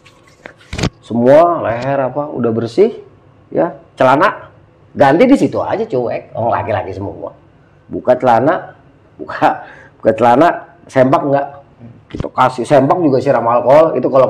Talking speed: 140 wpm